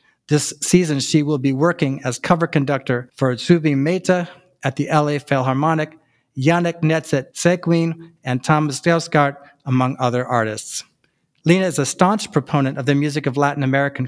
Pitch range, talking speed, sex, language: 130-160 Hz, 155 wpm, male, English